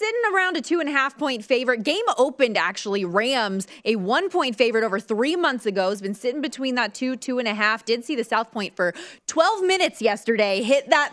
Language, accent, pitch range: English, American, 200-260 Hz